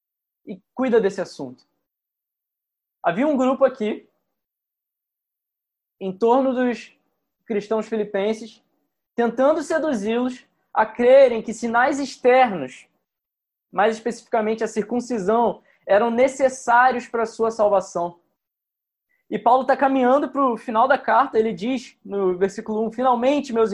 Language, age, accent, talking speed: Portuguese, 20-39, Brazilian, 115 wpm